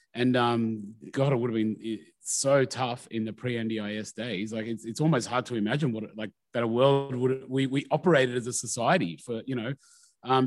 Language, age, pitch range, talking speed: English, 30-49, 115-140 Hz, 205 wpm